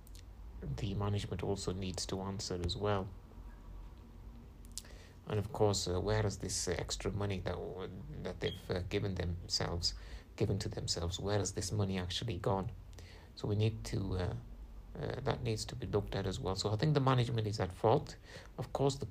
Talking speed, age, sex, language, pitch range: 180 wpm, 60-79, male, English, 90-105 Hz